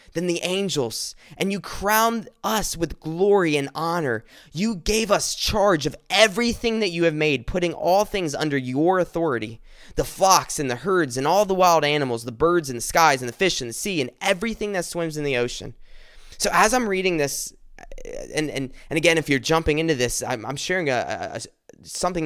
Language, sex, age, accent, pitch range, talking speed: English, male, 20-39, American, 145-195 Hz, 200 wpm